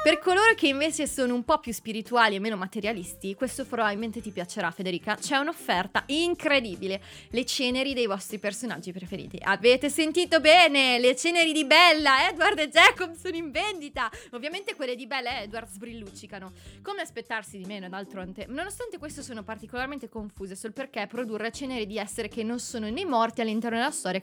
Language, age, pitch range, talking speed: Italian, 20-39, 215-290 Hz, 175 wpm